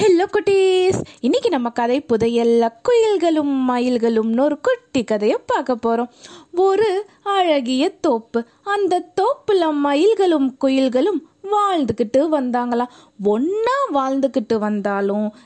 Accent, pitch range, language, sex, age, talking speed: native, 235-350 Hz, Tamil, female, 20-39, 95 wpm